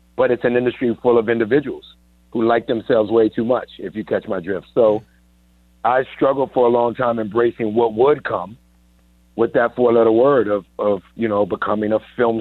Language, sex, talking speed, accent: English, male, 200 wpm, American